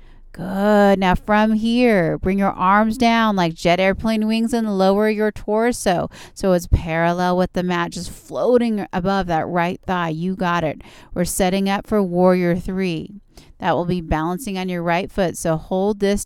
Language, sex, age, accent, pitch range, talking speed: English, female, 30-49, American, 170-205 Hz, 175 wpm